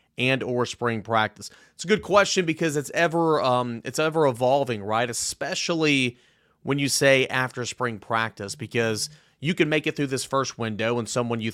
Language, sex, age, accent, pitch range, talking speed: English, male, 30-49, American, 115-140 Hz, 180 wpm